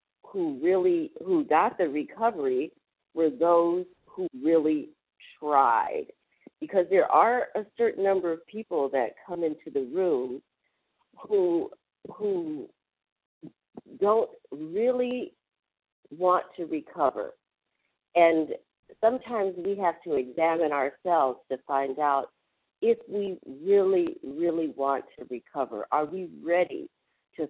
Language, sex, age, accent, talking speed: English, female, 50-69, American, 115 wpm